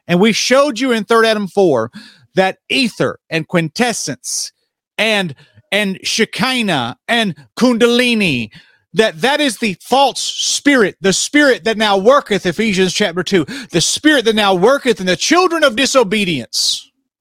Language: English